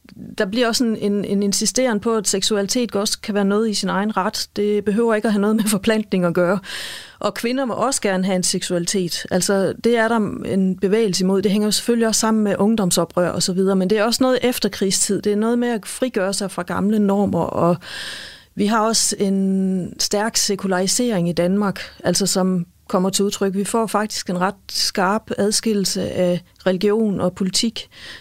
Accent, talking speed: native, 200 wpm